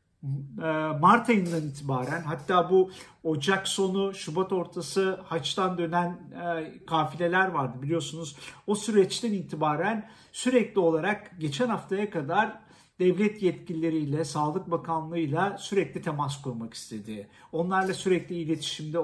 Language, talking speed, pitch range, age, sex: Turkish, 105 wpm, 160-190 Hz, 50-69, male